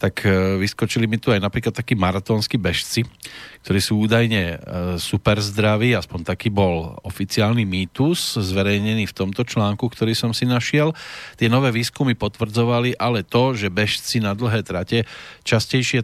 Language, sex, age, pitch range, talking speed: Slovak, male, 40-59, 100-120 Hz, 145 wpm